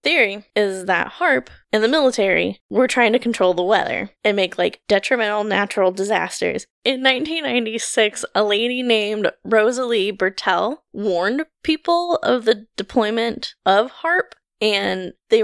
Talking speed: 135 wpm